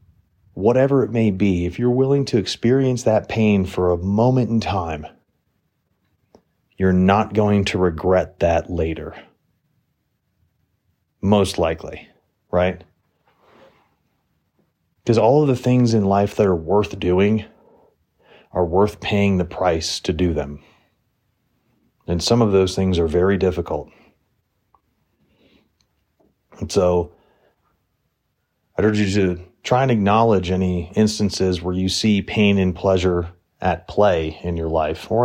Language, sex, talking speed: English, male, 130 wpm